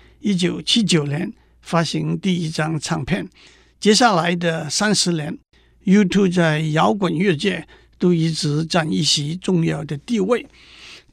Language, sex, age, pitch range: Chinese, male, 60-79, 160-205 Hz